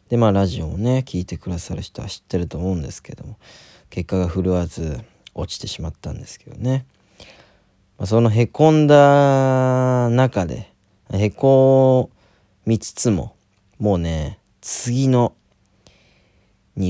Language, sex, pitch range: Japanese, male, 90-115 Hz